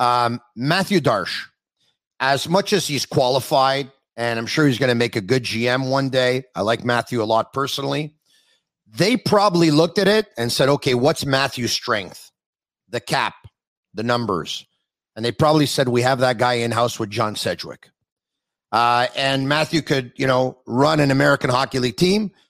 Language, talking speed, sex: English, 170 wpm, male